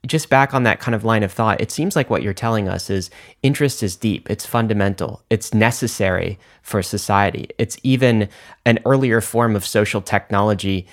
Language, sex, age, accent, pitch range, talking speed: English, male, 30-49, American, 105-130 Hz, 185 wpm